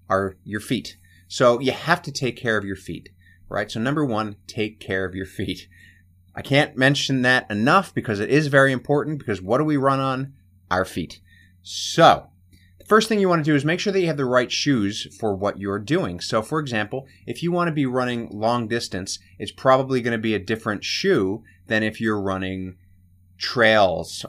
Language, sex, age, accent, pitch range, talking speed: English, male, 30-49, American, 90-125 Hz, 210 wpm